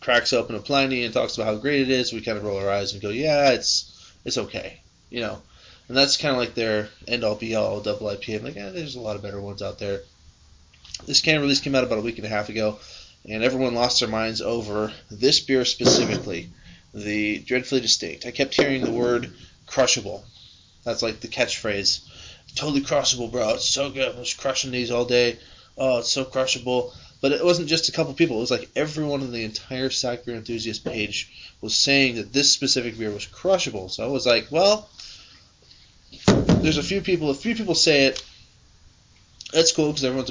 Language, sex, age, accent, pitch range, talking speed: English, male, 20-39, American, 105-135 Hz, 210 wpm